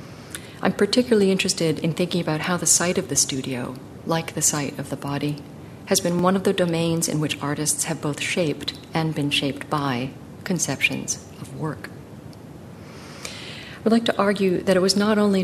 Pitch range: 145-175 Hz